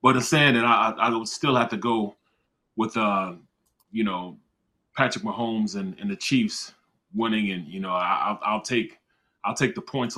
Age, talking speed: 30-49, 195 wpm